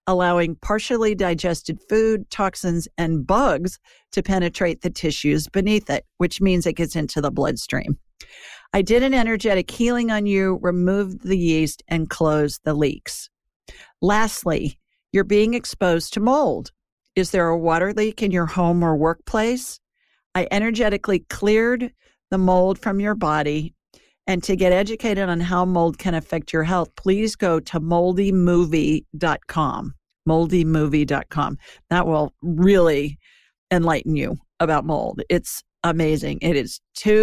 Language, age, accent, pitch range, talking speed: English, 50-69, American, 165-210 Hz, 140 wpm